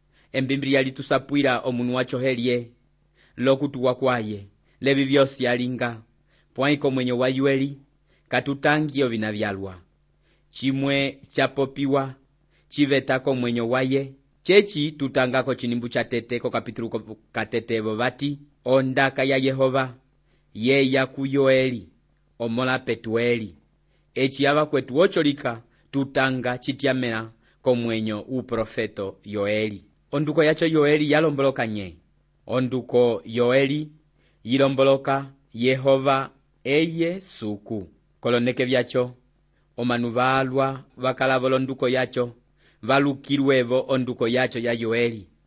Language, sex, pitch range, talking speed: English, male, 120-140 Hz, 95 wpm